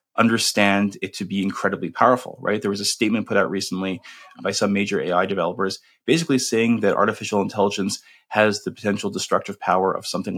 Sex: male